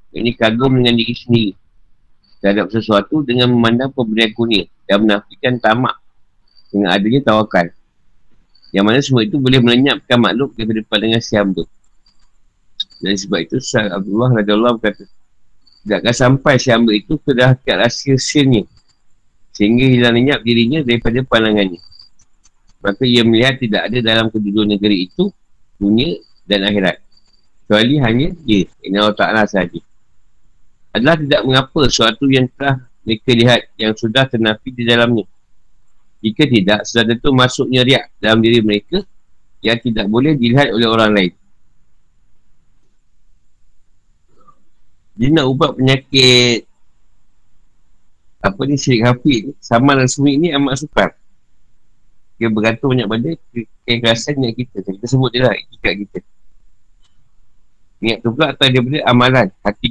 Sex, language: male, Malay